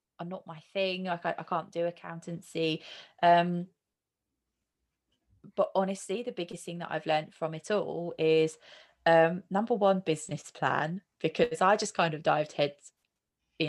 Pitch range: 155-195 Hz